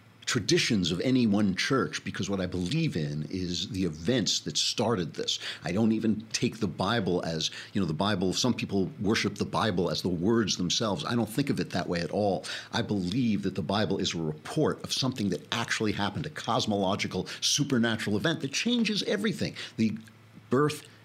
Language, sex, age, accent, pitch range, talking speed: English, male, 60-79, American, 100-140 Hz, 190 wpm